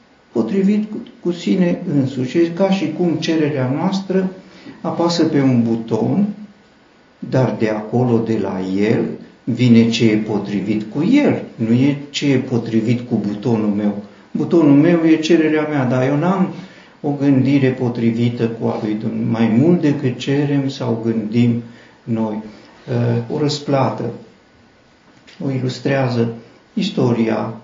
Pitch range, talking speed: 115-145 Hz, 135 wpm